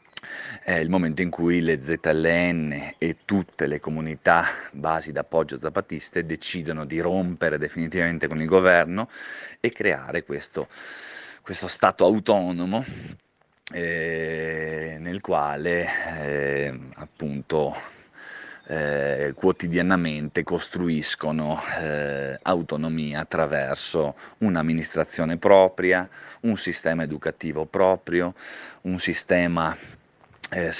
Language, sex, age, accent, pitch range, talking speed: Italian, male, 30-49, native, 80-90 Hz, 90 wpm